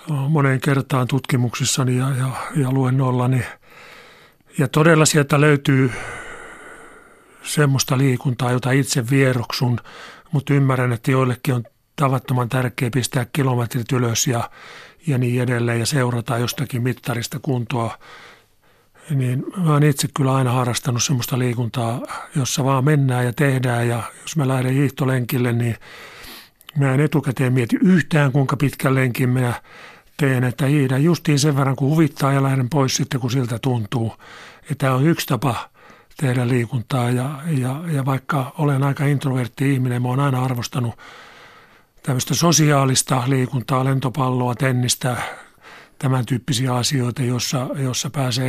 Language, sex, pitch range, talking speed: Finnish, male, 125-145 Hz, 130 wpm